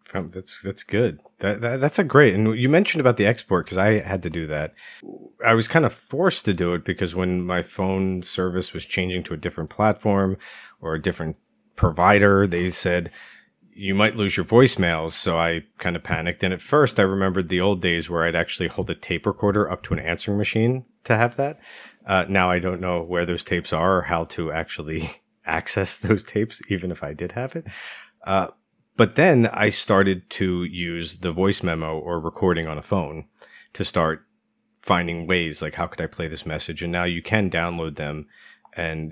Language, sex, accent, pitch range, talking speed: English, male, American, 85-105 Hz, 205 wpm